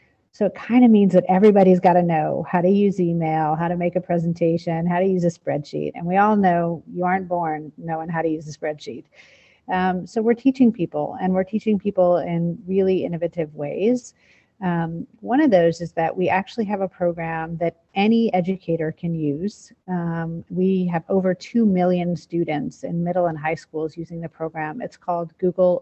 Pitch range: 165-190 Hz